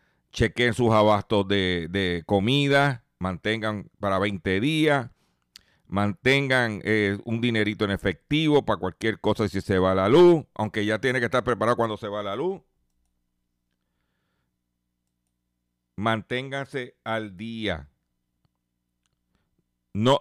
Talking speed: 120 wpm